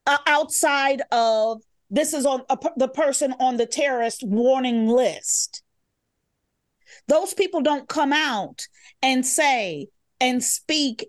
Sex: female